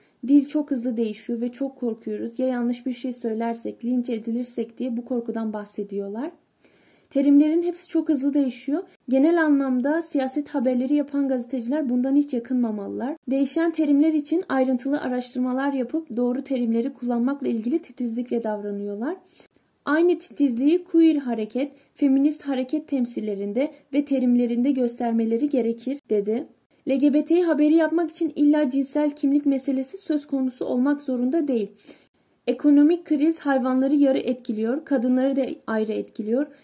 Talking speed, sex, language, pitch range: 130 wpm, female, Turkish, 245-295 Hz